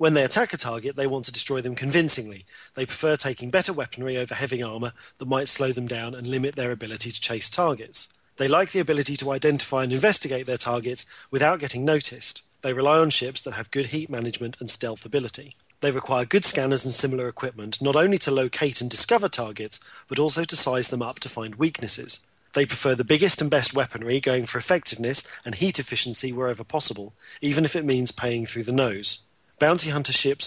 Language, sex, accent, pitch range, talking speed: English, male, British, 120-150 Hz, 205 wpm